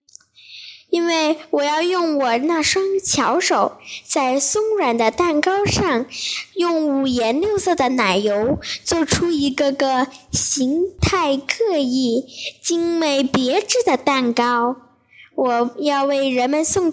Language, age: Chinese, 10-29